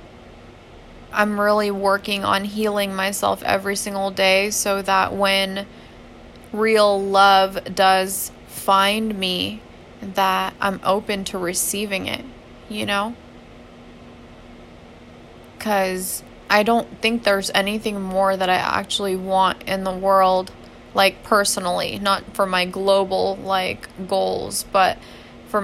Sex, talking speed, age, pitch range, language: female, 115 wpm, 20-39, 185-205 Hz, English